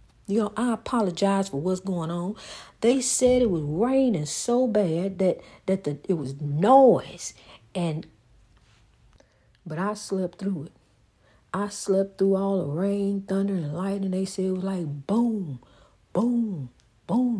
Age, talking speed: 60-79, 150 wpm